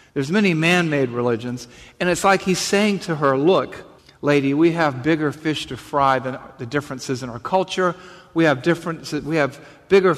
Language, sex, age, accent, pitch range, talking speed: English, male, 50-69, American, 135-185 Hz, 175 wpm